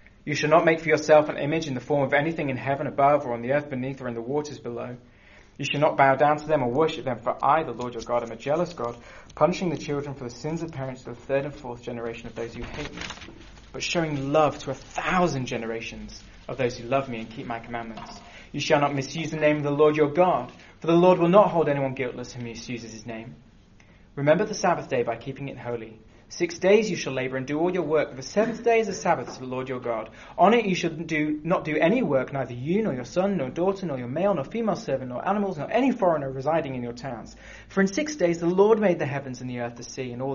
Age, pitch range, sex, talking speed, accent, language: 20-39, 120-155 Hz, male, 270 wpm, British, English